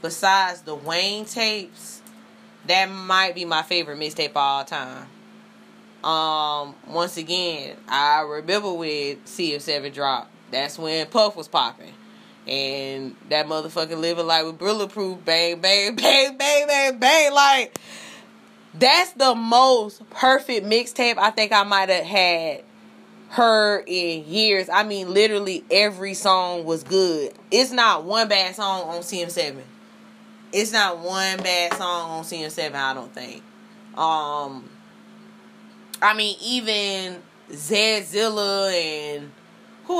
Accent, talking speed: American, 130 wpm